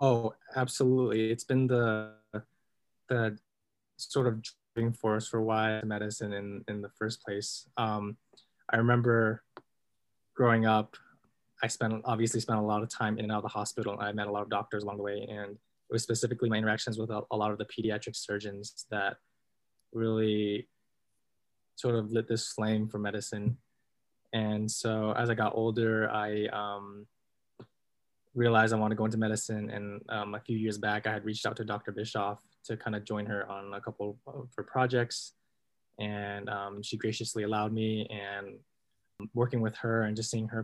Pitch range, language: 105-115 Hz, English